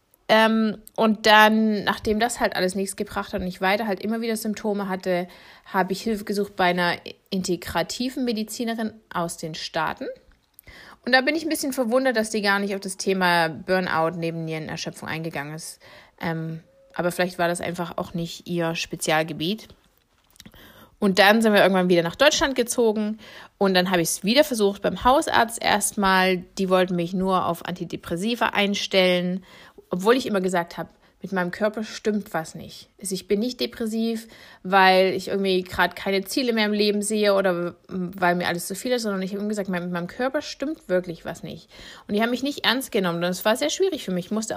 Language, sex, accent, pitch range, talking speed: German, female, German, 180-215 Hz, 190 wpm